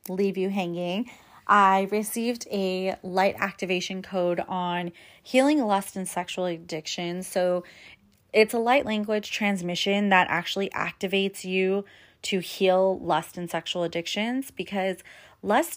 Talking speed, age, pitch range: 125 wpm, 30-49, 175-205 Hz